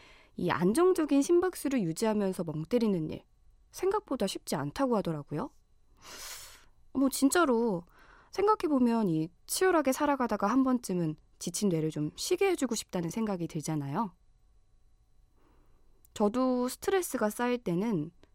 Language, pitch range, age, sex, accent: Korean, 170-255 Hz, 20-39, female, native